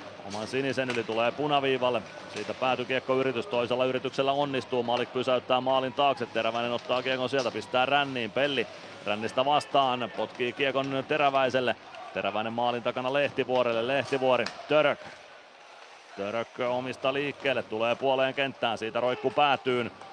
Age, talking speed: 30-49, 125 wpm